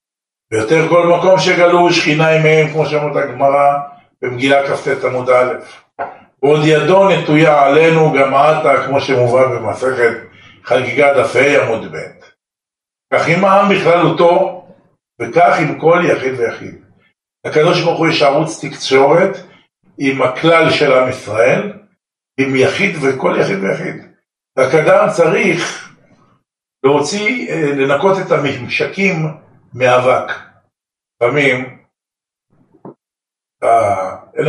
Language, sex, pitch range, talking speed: Hebrew, male, 135-175 Hz, 105 wpm